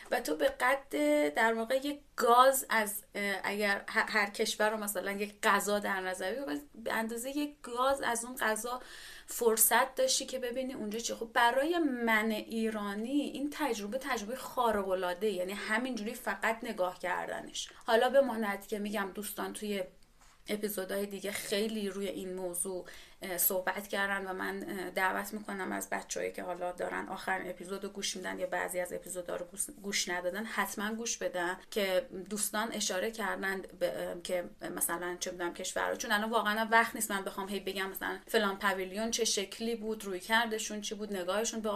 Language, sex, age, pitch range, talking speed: Persian, female, 30-49, 195-230 Hz, 165 wpm